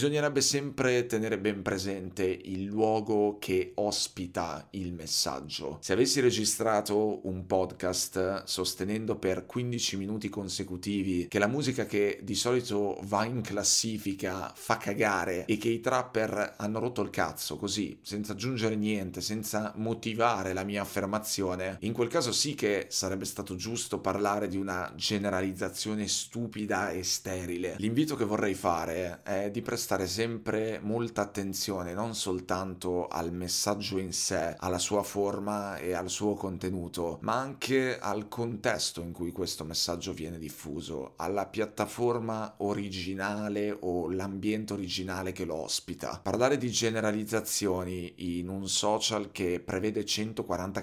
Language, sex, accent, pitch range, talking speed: Italian, male, native, 95-110 Hz, 135 wpm